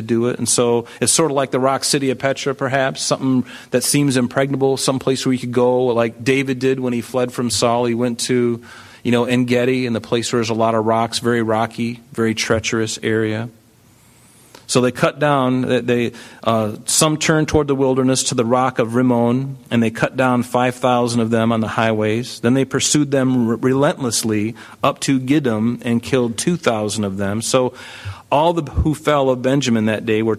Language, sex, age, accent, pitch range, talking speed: English, male, 40-59, American, 110-130 Hz, 205 wpm